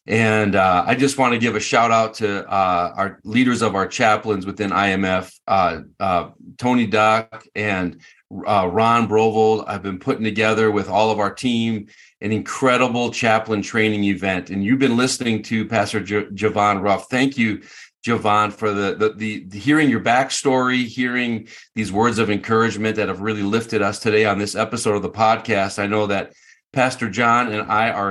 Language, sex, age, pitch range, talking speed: English, male, 40-59, 105-130 Hz, 180 wpm